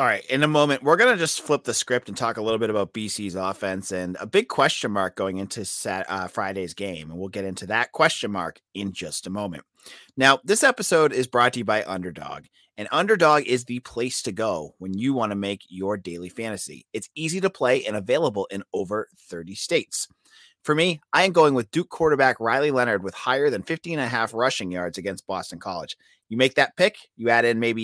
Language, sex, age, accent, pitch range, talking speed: English, male, 30-49, American, 105-150 Hz, 225 wpm